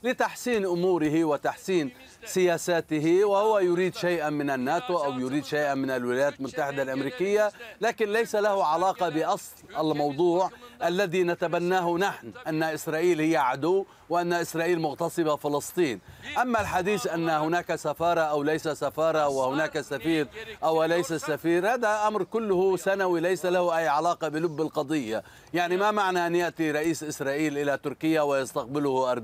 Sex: male